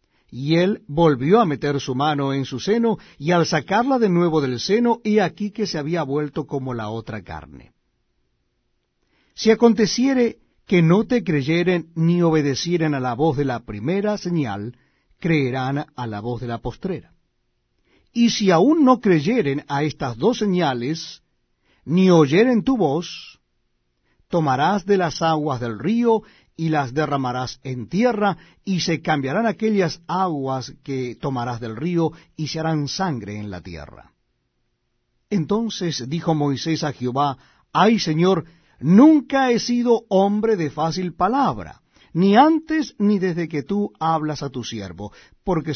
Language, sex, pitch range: Spanish, male, 130-200 Hz